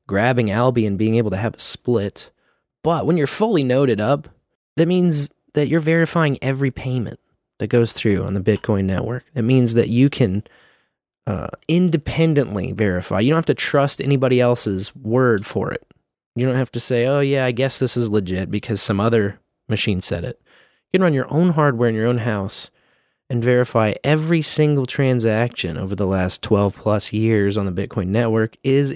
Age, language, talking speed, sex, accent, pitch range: 20-39, English, 190 wpm, male, American, 105-140 Hz